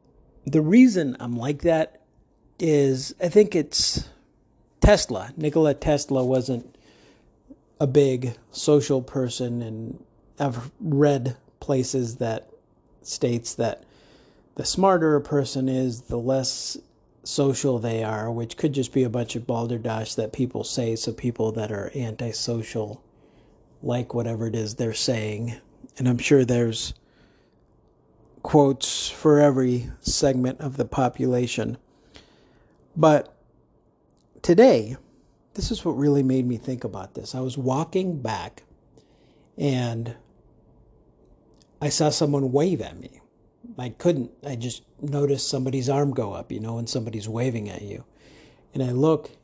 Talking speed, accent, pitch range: 130 wpm, American, 115-145 Hz